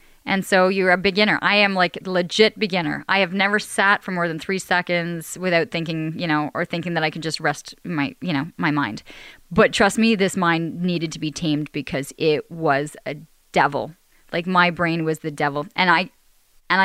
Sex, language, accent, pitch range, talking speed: female, English, American, 165-220 Hz, 210 wpm